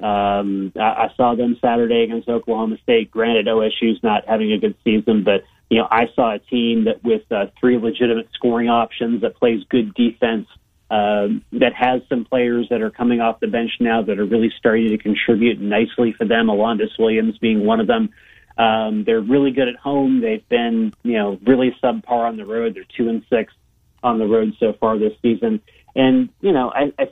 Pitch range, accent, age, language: 115-150 Hz, American, 40-59, English